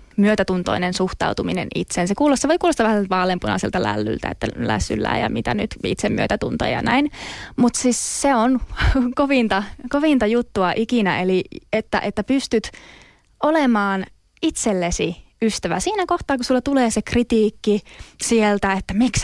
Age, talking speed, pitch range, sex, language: 20-39, 135 wpm, 205-275 Hz, female, Finnish